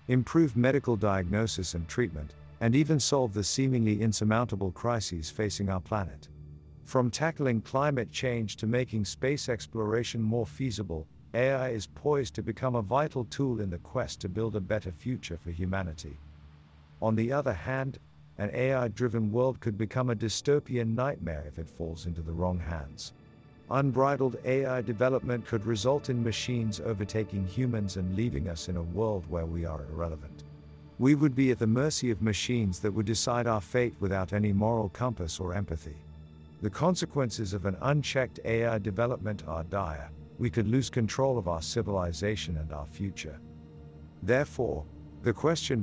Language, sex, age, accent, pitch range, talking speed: English, male, 50-69, American, 85-125 Hz, 160 wpm